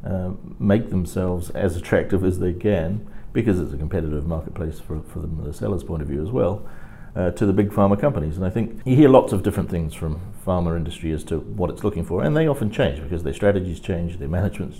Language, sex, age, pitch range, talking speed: English, male, 50-69, 85-105 Hz, 230 wpm